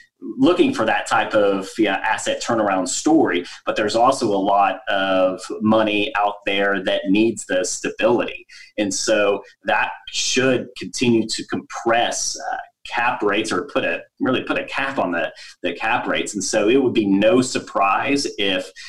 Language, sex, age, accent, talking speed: English, male, 30-49, American, 165 wpm